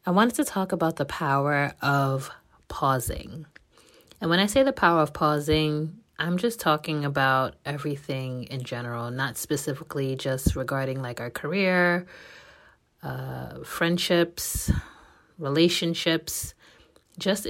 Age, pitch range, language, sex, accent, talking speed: 30-49, 135-165 Hz, English, female, American, 120 wpm